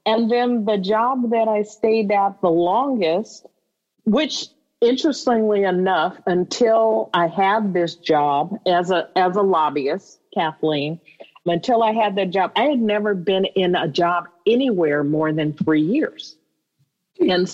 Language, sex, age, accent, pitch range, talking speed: English, female, 50-69, American, 160-205 Hz, 145 wpm